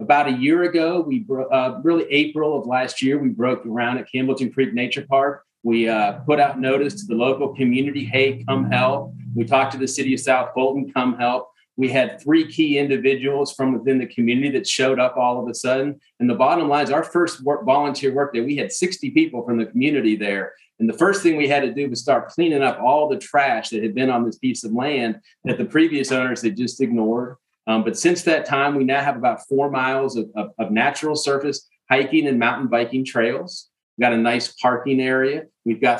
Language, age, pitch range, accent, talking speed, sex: English, 40-59, 120-145 Hz, American, 225 wpm, male